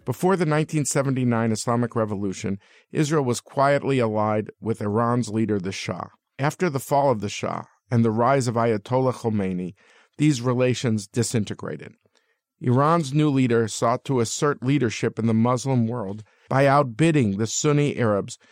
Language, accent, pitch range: English, American, 115-145 Hz